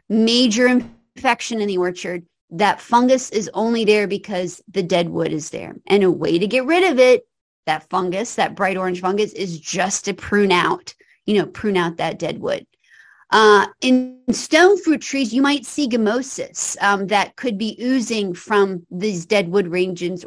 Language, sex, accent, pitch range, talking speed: English, female, American, 180-235 Hz, 180 wpm